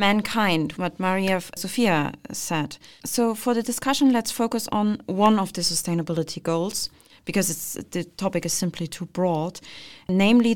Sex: female